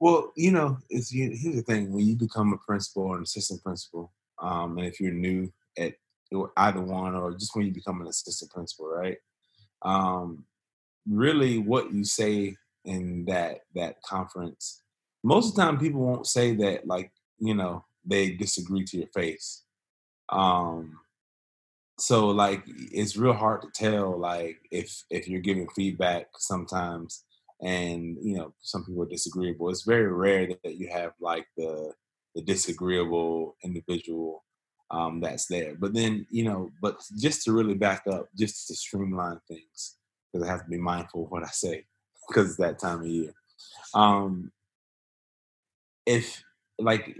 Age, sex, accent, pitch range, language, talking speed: 20-39, male, American, 90-105 Hz, English, 165 wpm